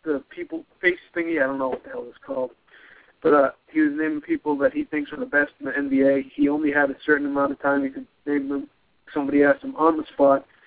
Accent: American